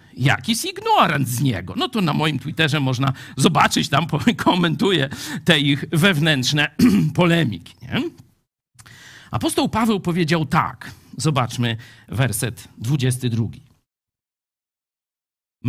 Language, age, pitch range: Polish, 50-69, 120-200 Hz